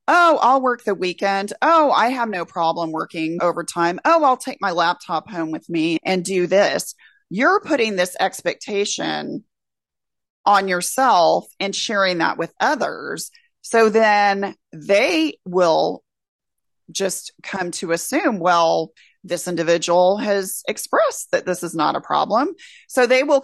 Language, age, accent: English, 30-49, American